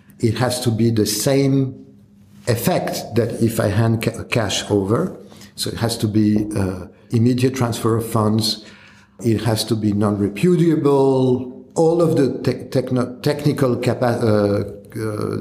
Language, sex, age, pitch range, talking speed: English, male, 50-69, 105-125 Hz, 150 wpm